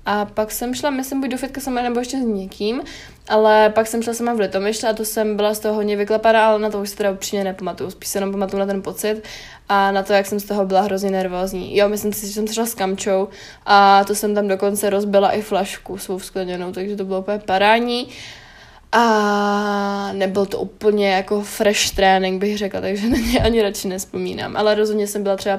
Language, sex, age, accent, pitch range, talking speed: Czech, female, 20-39, native, 195-220 Hz, 225 wpm